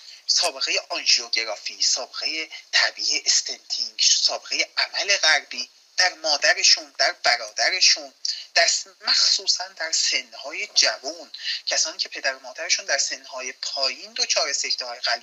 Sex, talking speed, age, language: male, 120 wpm, 30-49, Persian